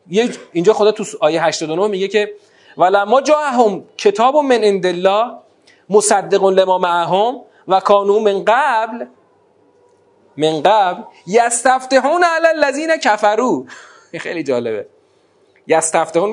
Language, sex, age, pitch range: Persian, male, 40-59, 175-260 Hz